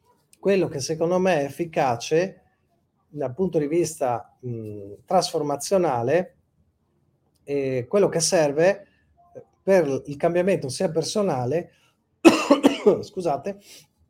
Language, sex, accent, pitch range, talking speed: Italian, male, native, 130-180 Hz, 90 wpm